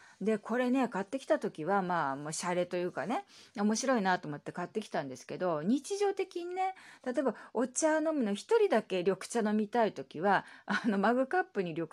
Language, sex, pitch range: Japanese, female, 175-265 Hz